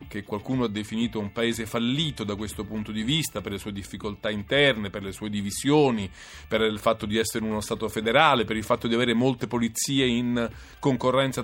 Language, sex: Italian, male